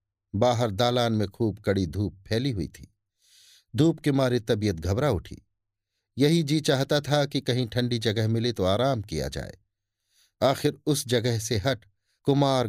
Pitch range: 100-130 Hz